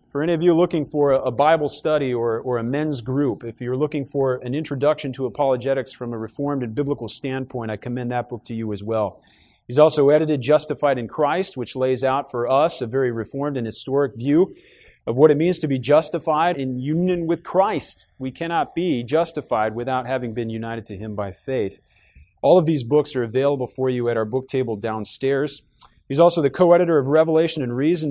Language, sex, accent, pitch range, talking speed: English, male, American, 120-155 Hz, 205 wpm